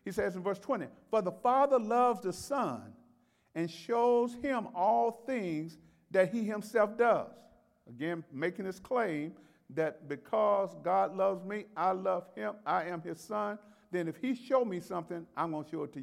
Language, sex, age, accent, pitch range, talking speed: English, male, 50-69, American, 180-235 Hz, 180 wpm